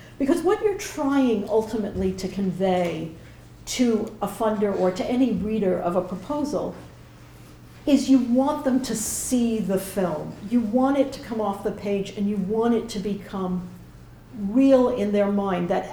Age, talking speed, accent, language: 50-69, 165 wpm, American, English